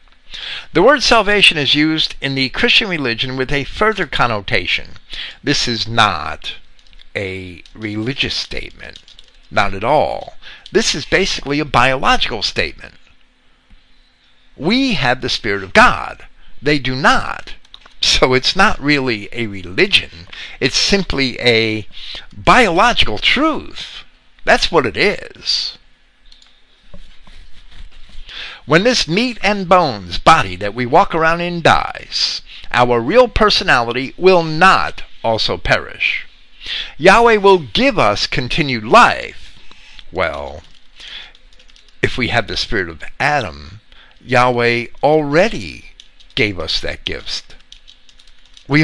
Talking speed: 115 wpm